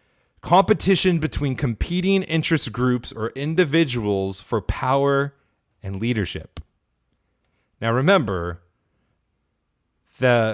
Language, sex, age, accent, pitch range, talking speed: English, male, 30-49, American, 105-155 Hz, 80 wpm